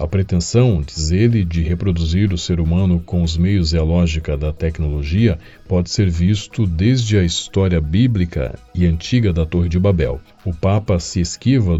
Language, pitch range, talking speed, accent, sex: Portuguese, 85-110 Hz, 175 wpm, Brazilian, male